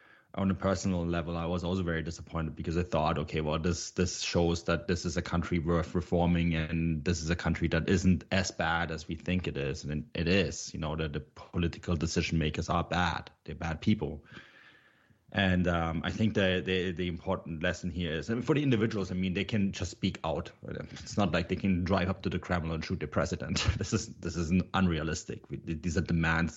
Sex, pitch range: male, 80-95 Hz